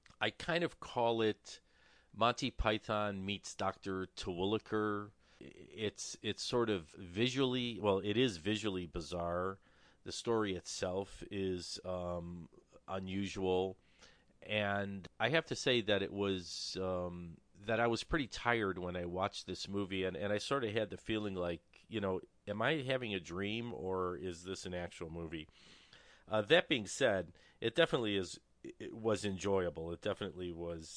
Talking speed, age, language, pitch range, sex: 155 wpm, 40-59, English, 85-105 Hz, male